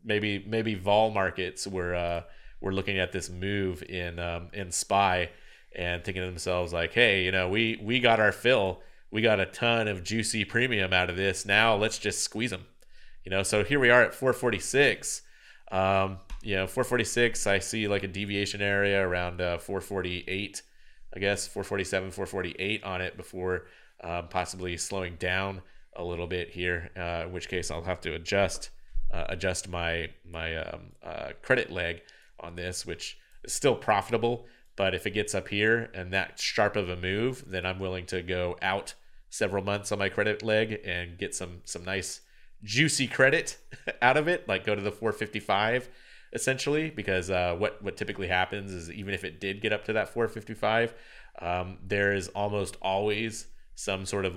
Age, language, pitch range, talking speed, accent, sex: 30-49, English, 90-105 Hz, 180 wpm, American, male